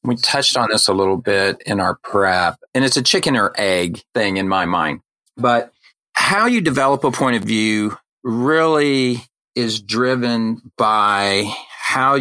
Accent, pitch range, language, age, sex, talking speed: American, 105-130 Hz, English, 40-59, male, 160 wpm